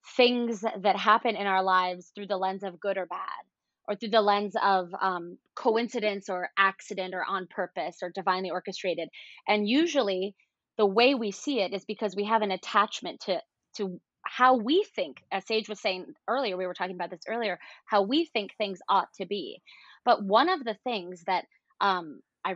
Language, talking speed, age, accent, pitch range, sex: English, 190 wpm, 20-39, American, 190-230 Hz, female